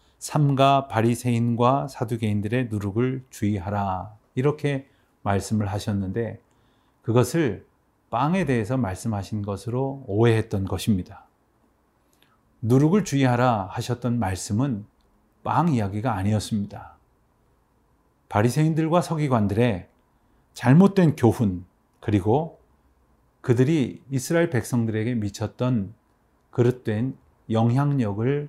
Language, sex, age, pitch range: Korean, male, 40-59, 105-140 Hz